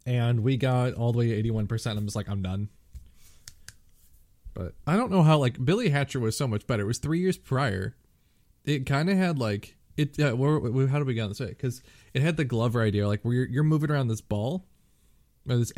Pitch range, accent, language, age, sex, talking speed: 105-135 Hz, American, English, 20-39, male, 235 wpm